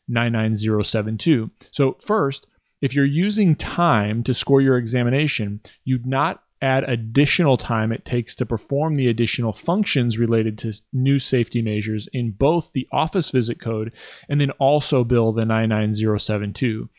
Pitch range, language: 115-140 Hz, English